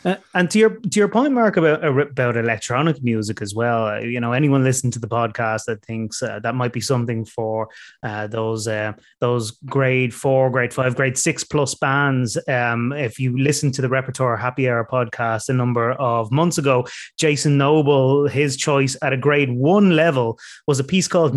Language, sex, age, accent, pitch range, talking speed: English, male, 20-39, Irish, 120-145 Hz, 195 wpm